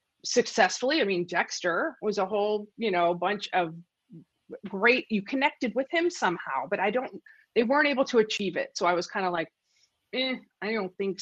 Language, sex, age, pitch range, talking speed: English, female, 30-49, 190-260 Hz, 195 wpm